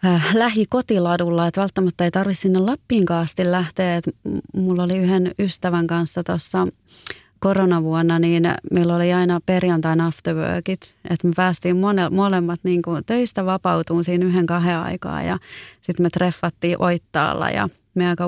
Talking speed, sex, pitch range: 140 wpm, female, 170-190 Hz